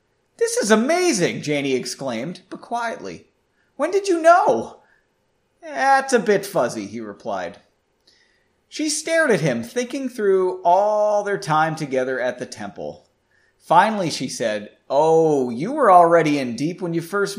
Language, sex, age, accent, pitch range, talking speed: English, male, 30-49, American, 160-255 Hz, 145 wpm